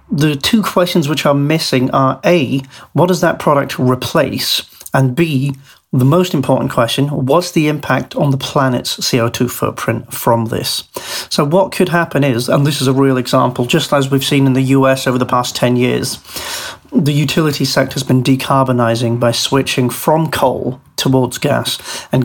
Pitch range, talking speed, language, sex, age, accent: 130-150 Hz, 175 wpm, English, male, 40-59, British